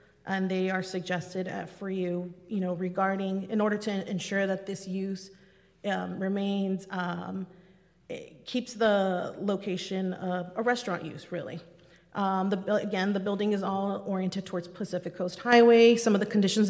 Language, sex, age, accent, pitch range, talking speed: English, female, 30-49, American, 185-215 Hz, 155 wpm